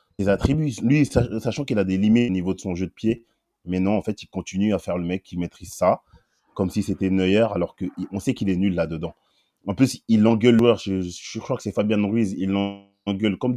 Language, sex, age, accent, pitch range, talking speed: French, male, 30-49, French, 95-115 Hz, 230 wpm